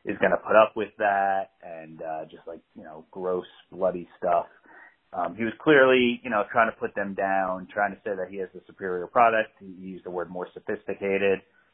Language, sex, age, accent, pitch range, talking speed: English, male, 30-49, American, 95-120 Hz, 215 wpm